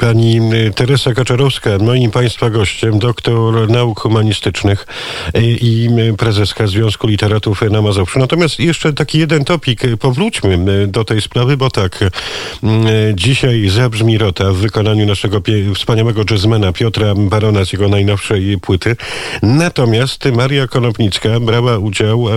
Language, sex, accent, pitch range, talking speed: Polish, male, native, 100-120 Hz, 120 wpm